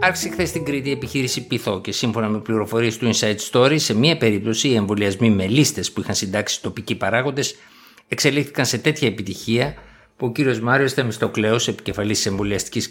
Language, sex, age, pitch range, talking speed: Greek, male, 60-79, 105-135 Hz, 170 wpm